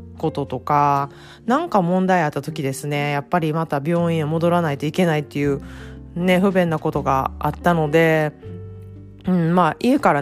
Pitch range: 145-180 Hz